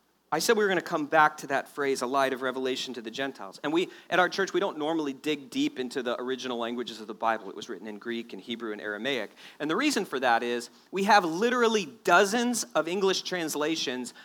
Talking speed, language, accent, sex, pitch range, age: 240 wpm, English, American, male, 130-185 Hz, 40-59